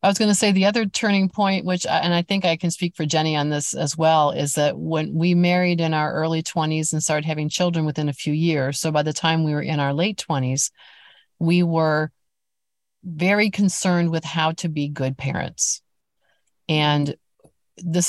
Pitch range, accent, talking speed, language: 150-180 Hz, American, 200 wpm, English